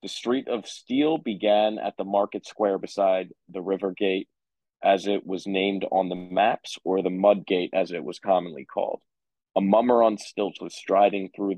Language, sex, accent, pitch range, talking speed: English, male, American, 95-105 Hz, 185 wpm